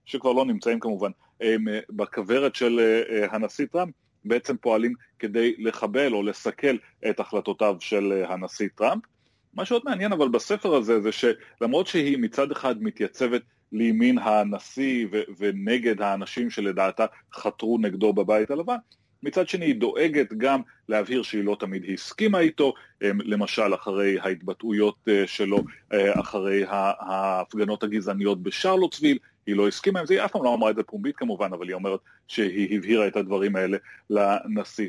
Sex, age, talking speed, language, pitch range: male, 30-49, 145 wpm, Hebrew, 105-145 Hz